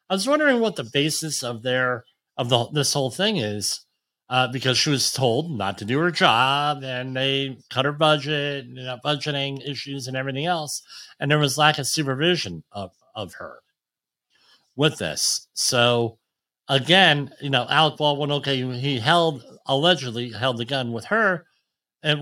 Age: 50-69